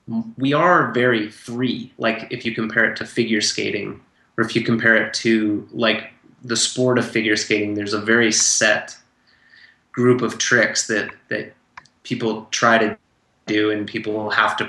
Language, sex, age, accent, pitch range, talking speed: English, male, 30-49, American, 105-120 Hz, 170 wpm